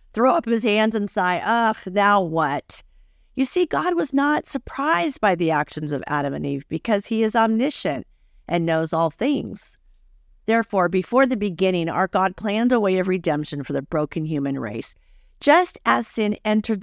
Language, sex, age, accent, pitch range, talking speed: English, female, 50-69, American, 150-220 Hz, 180 wpm